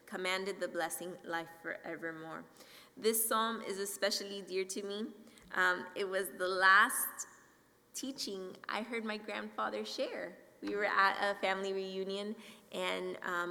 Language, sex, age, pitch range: English, female, 20-39, 180-225 Hz